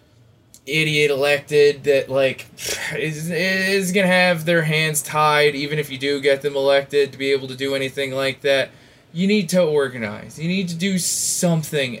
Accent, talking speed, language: American, 175 wpm, English